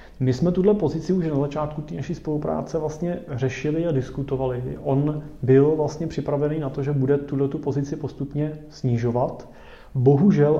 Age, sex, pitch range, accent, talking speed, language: 30-49, male, 120-145 Hz, native, 160 wpm, Czech